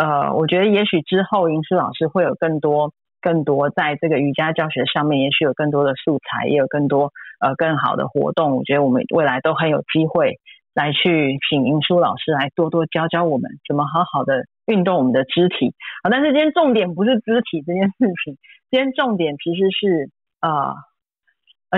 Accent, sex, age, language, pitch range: native, female, 30-49, Chinese, 150-195 Hz